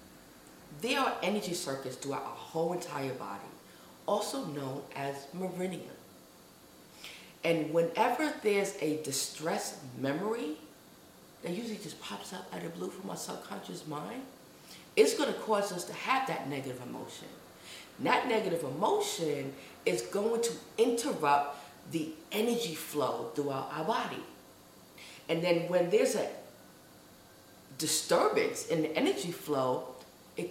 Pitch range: 145-210 Hz